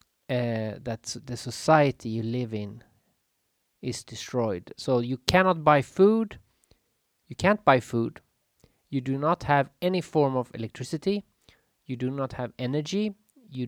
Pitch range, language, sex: 120-155 Hz, English, male